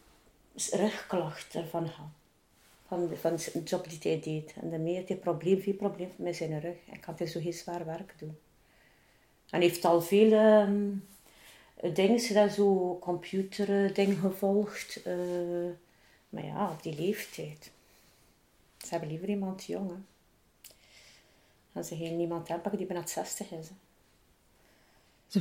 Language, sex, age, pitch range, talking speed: Dutch, female, 30-49, 170-210 Hz, 120 wpm